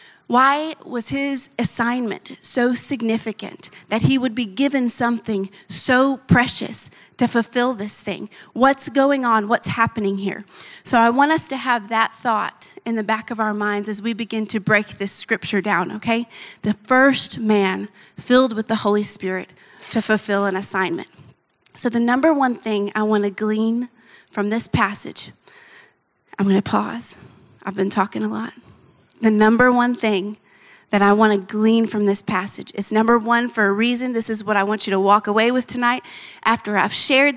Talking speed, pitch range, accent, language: 175 wpm, 205-245 Hz, American, English